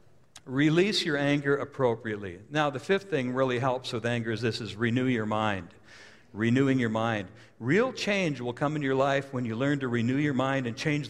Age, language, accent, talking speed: 60-79, English, American, 200 wpm